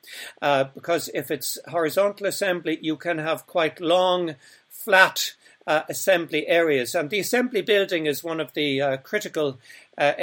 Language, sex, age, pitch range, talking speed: English, male, 60-79, 145-175 Hz, 155 wpm